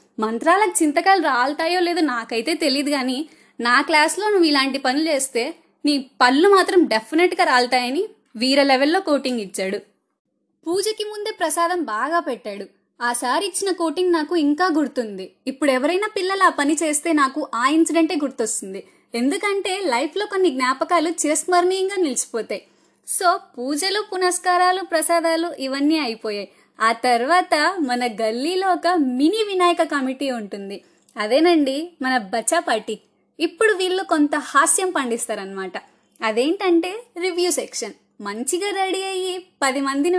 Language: Telugu